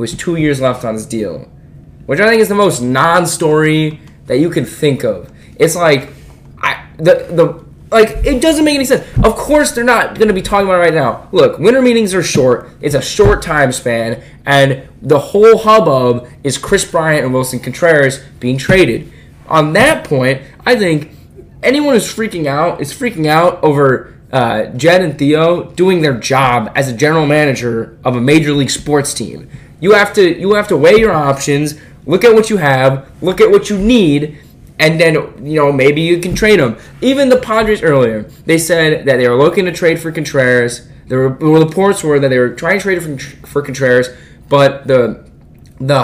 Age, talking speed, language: 10-29, 200 wpm, English